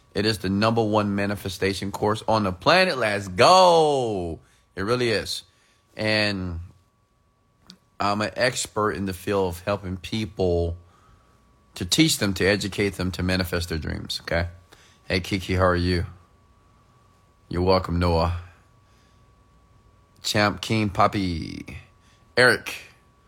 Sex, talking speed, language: male, 125 wpm, English